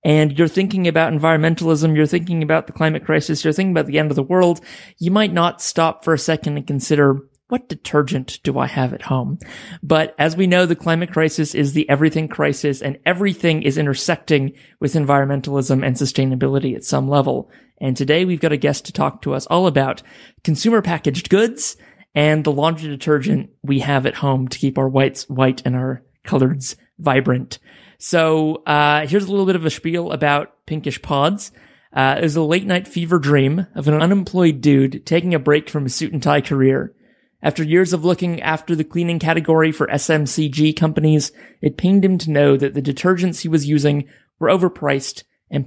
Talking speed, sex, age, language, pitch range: 190 wpm, male, 30-49, English, 145-170 Hz